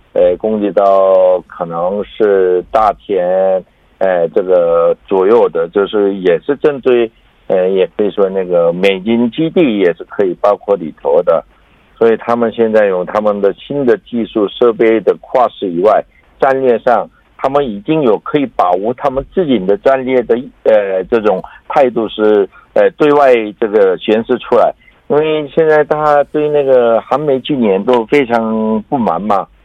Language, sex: Korean, male